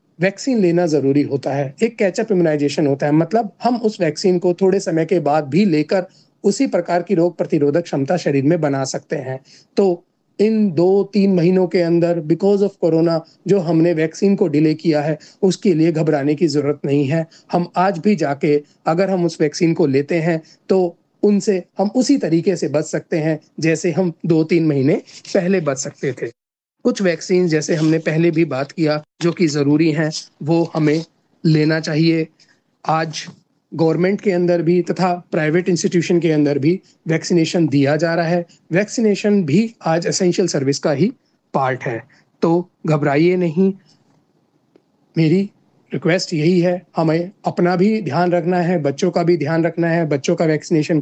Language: Hindi